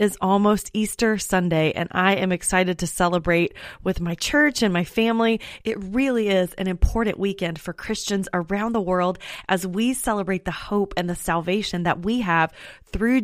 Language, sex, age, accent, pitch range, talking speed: English, female, 30-49, American, 175-210 Hz, 175 wpm